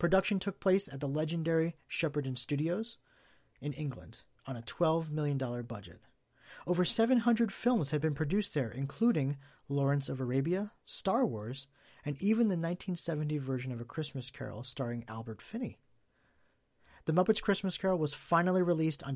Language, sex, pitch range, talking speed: English, male, 130-165 Hz, 150 wpm